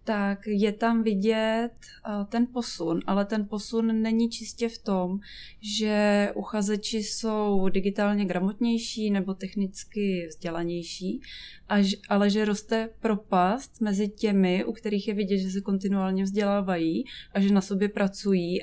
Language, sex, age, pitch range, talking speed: Czech, female, 20-39, 190-210 Hz, 130 wpm